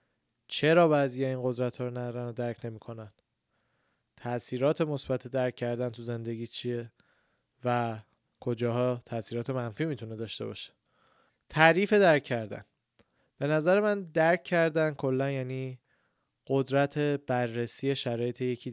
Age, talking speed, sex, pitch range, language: 20-39, 120 wpm, male, 120-145 Hz, Persian